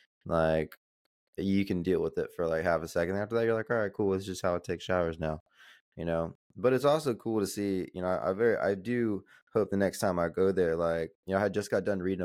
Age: 20-39